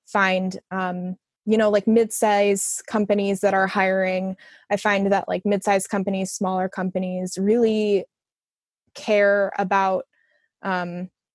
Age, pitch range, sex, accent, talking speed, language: 20-39, 185-215 Hz, female, American, 115 wpm, English